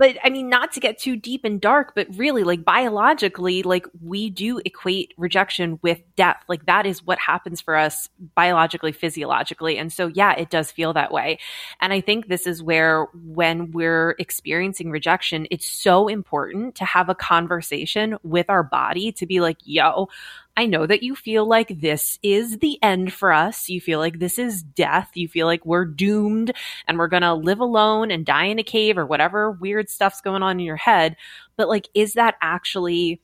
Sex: female